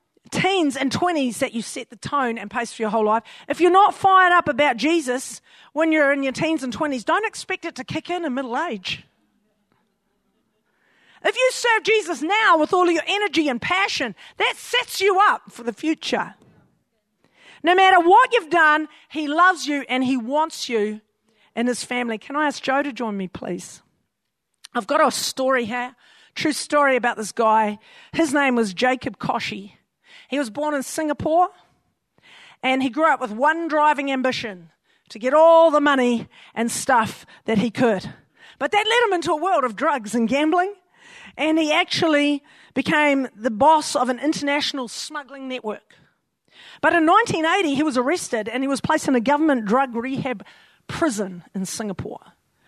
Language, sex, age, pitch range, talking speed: English, female, 40-59, 240-325 Hz, 180 wpm